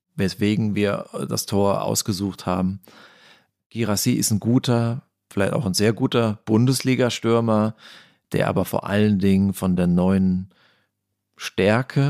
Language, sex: German, male